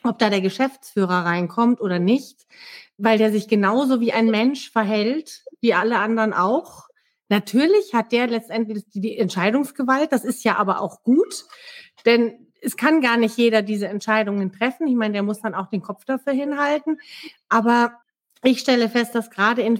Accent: German